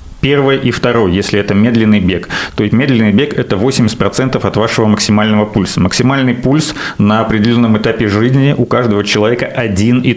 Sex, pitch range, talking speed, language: male, 105-130 Hz, 170 wpm, Russian